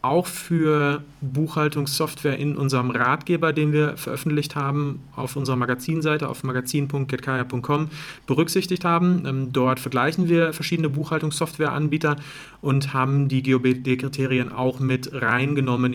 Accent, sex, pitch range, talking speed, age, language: German, male, 130-155 Hz, 110 wpm, 40-59, German